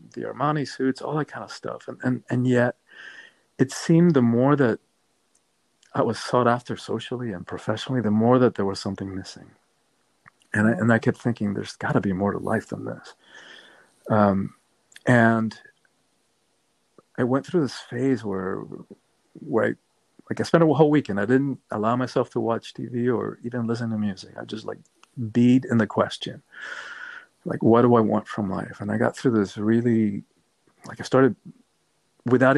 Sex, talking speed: male, 180 wpm